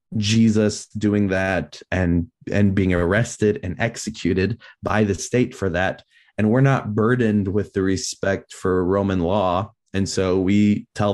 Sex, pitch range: male, 90-115 Hz